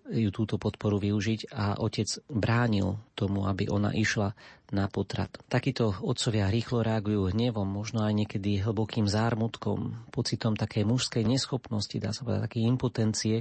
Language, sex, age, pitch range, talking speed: Slovak, male, 40-59, 105-120 Hz, 145 wpm